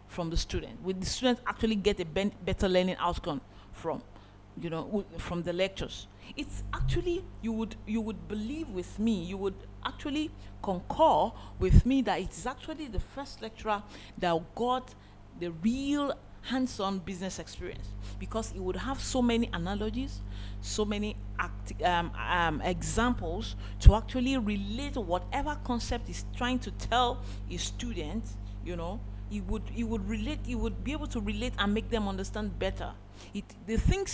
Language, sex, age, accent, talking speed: English, female, 40-59, Nigerian, 165 wpm